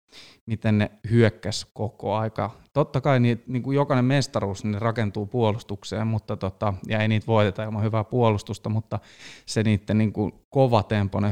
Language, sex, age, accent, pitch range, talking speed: Finnish, male, 20-39, native, 105-115 Hz, 155 wpm